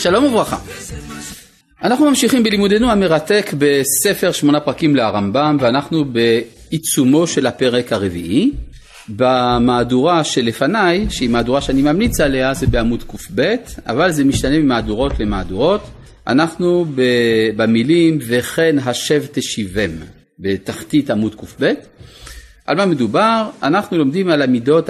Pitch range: 115-190 Hz